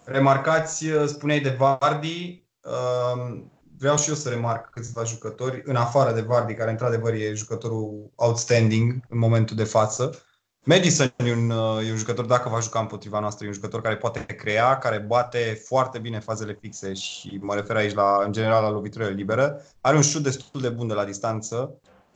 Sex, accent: male, native